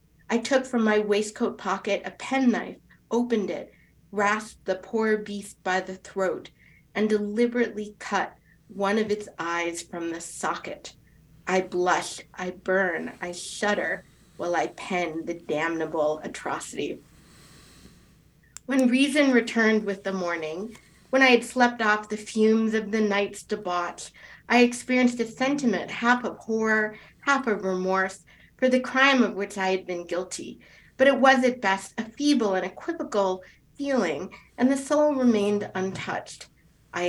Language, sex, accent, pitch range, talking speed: English, female, American, 185-245 Hz, 145 wpm